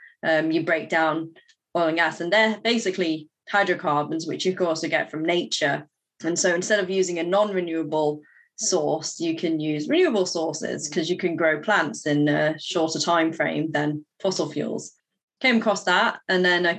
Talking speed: 180 wpm